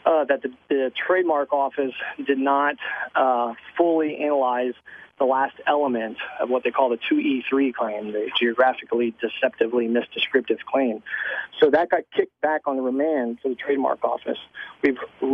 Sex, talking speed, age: male, 155 wpm, 40-59